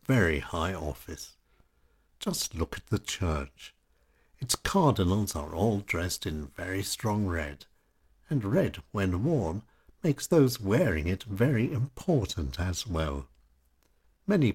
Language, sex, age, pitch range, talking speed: English, male, 60-79, 75-115 Hz, 125 wpm